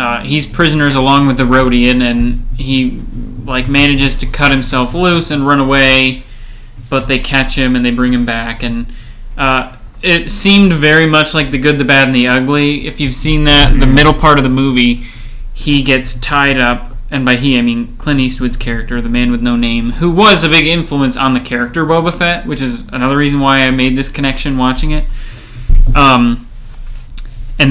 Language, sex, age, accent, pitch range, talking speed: English, male, 20-39, American, 120-140 Hz, 195 wpm